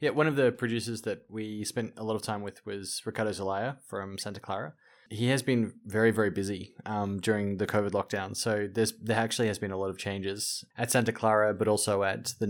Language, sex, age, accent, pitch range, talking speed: English, male, 20-39, Australian, 100-115 Hz, 225 wpm